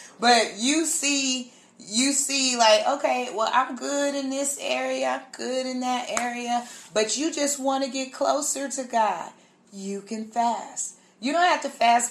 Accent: American